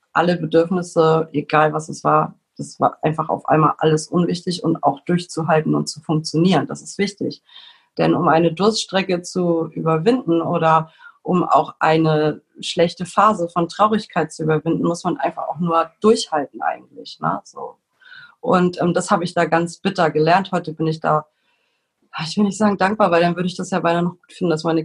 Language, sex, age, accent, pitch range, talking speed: German, female, 30-49, German, 160-180 Hz, 185 wpm